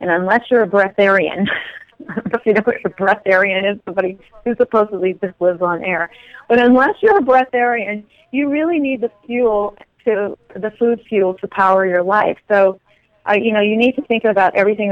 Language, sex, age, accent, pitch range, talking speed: English, female, 40-59, American, 185-220 Hz, 195 wpm